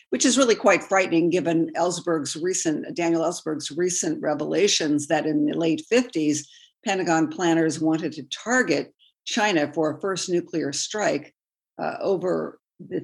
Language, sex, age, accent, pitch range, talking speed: English, female, 50-69, American, 160-210 Hz, 145 wpm